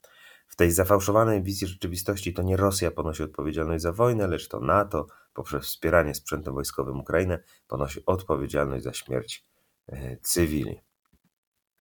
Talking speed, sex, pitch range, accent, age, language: 125 wpm, male, 75-100 Hz, native, 30-49, Polish